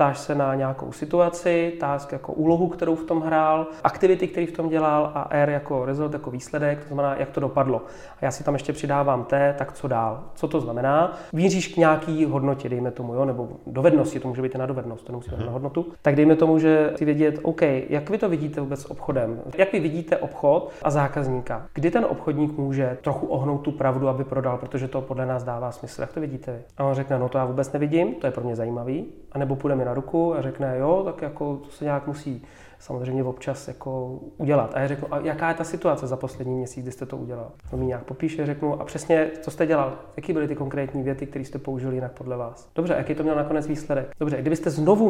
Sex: male